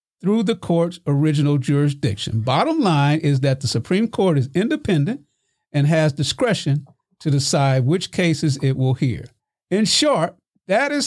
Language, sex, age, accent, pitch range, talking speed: English, male, 50-69, American, 140-195 Hz, 150 wpm